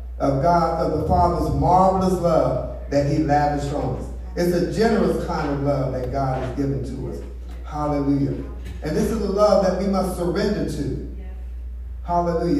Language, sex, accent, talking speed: English, male, American, 165 wpm